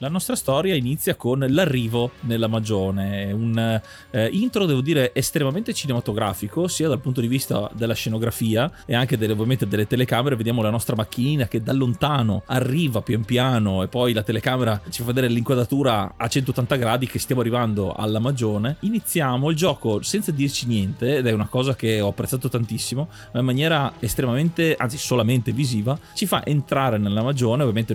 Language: Italian